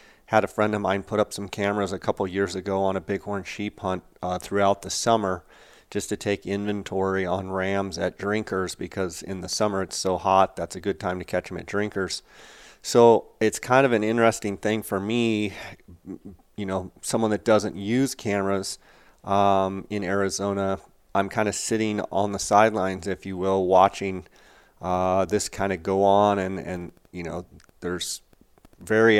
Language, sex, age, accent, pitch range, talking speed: English, male, 30-49, American, 95-105 Hz, 180 wpm